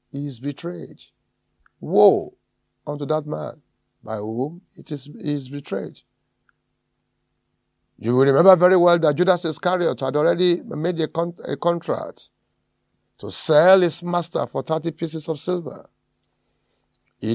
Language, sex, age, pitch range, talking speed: English, male, 50-69, 130-175 Hz, 135 wpm